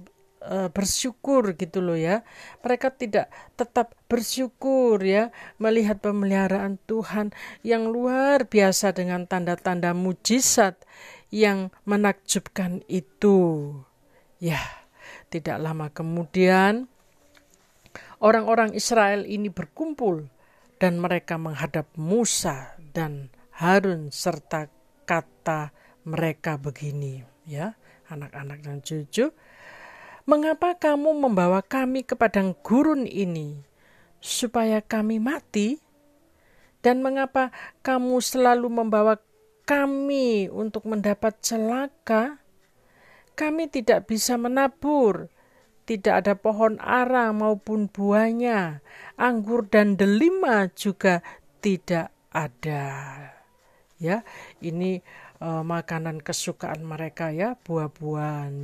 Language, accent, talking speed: Indonesian, native, 90 wpm